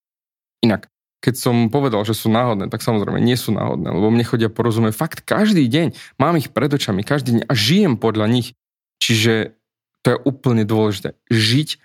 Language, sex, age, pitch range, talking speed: Slovak, male, 20-39, 110-135 Hz, 175 wpm